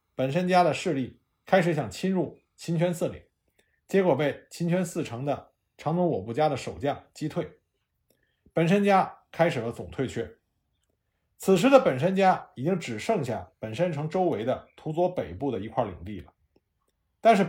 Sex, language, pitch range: male, Chinese, 120-190 Hz